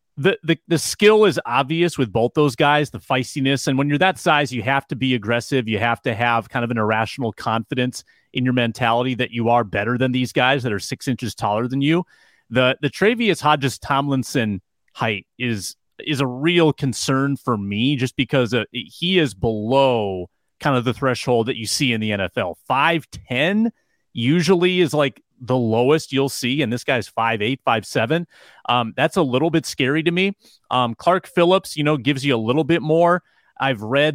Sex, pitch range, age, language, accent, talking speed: male, 115-145 Hz, 30-49, English, American, 200 wpm